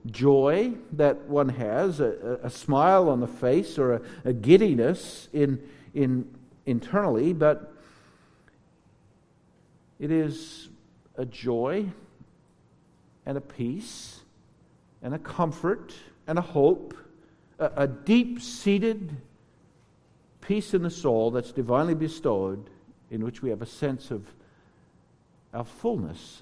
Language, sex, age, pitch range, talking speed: English, male, 50-69, 130-175 Hz, 115 wpm